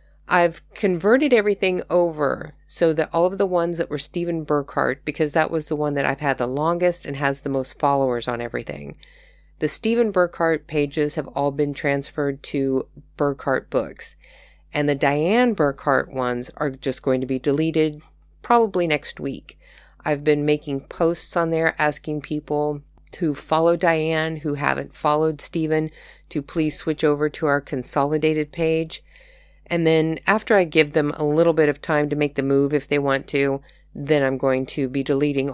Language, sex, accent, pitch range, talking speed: English, female, American, 140-170 Hz, 175 wpm